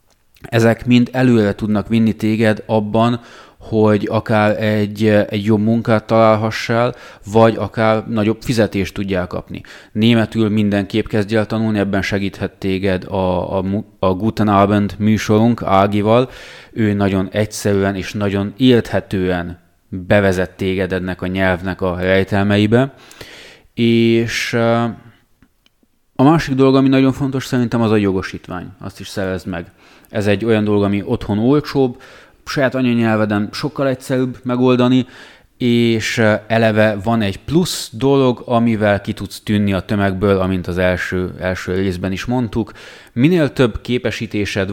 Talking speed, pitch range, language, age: 130 wpm, 95-115 Hz, Hungarian, 20-39